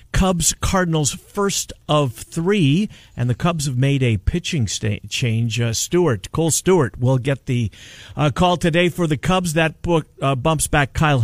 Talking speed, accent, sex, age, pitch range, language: 165 wpm, American, male, 50-69, 120-160 Hz, English